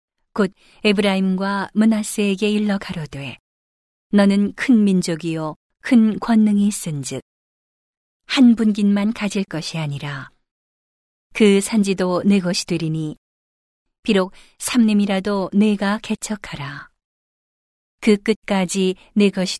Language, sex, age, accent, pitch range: Korean, female, 40-59, native, 180-210 Hz